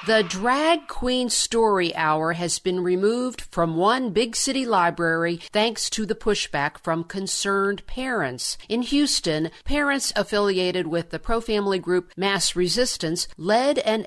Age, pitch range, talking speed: 50-69, 170-220 Hz, 135 wpm